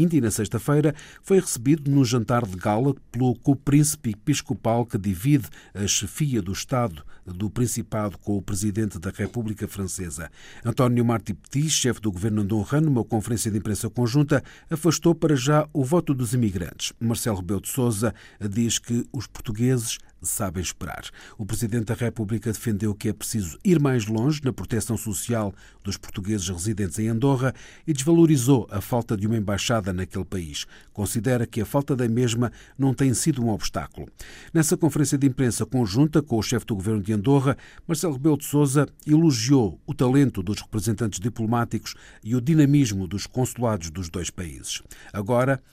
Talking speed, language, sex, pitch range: 165 wpm, Portuguese, male, 105-135 Hz